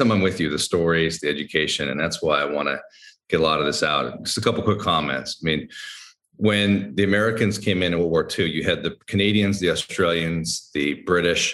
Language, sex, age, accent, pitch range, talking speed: English, male, 40-59, American, 80-110 Hz, 225 wpm